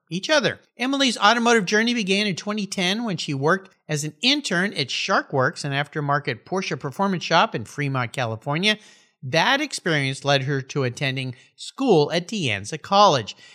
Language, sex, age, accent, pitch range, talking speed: English, male, 50-69, American, 140-220 Hz, 155 wpm